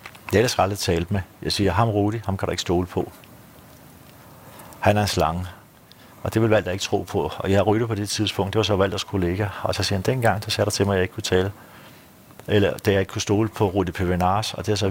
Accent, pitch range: native, 90-105 Hz